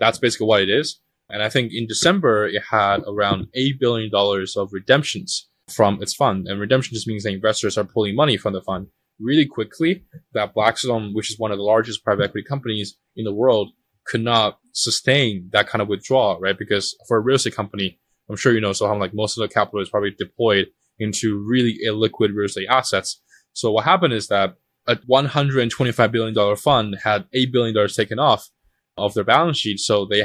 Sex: male